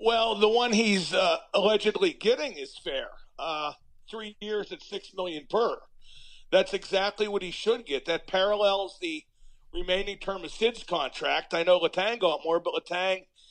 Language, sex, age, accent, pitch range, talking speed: English, male, 40-59, American, 185-260 Hz, 165 wpm